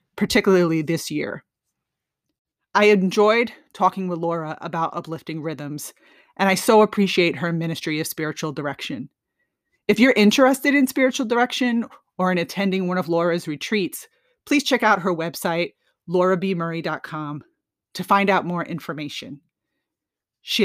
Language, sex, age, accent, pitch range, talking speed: English, female, 30-49, American, 165-210 Hz, 130 wpm